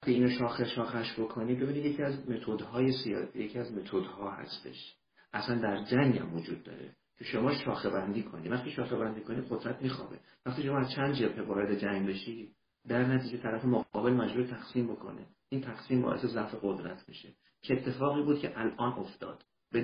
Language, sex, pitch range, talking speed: Persian, male, 105-125 Hz, 170 wpm